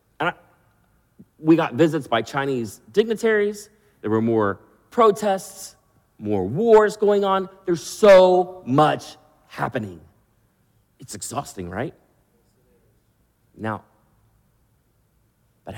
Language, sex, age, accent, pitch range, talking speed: English, male, 40-59, American, 110-150 Hz, 90 wpm